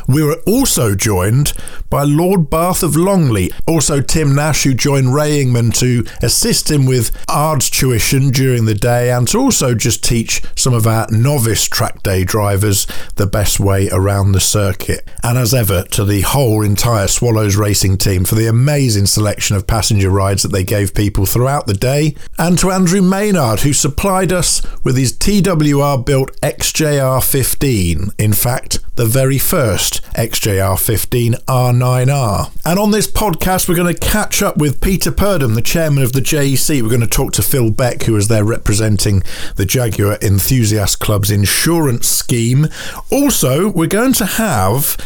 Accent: British